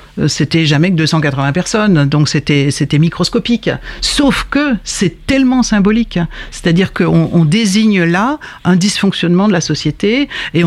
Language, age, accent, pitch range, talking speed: French, 60-79, French, 155-195 Hz, 140 wpm